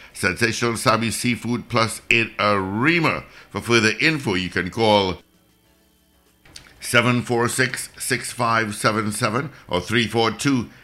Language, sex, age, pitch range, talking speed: English, male, 60-79, 90-120 Hz, 90 wpm